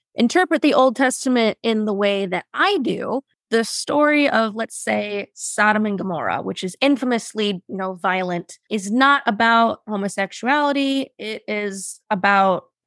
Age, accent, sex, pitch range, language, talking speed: 20-39, American, female, 195-260 Hz, English, 145 wpm